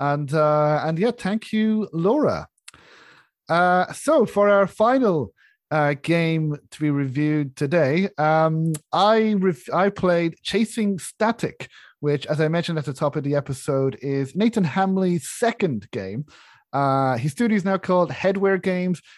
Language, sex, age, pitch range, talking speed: English, male, 30-49, 150-195 Hz, 150 wpm